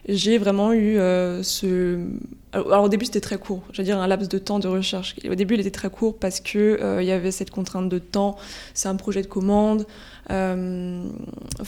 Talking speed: 205 wpm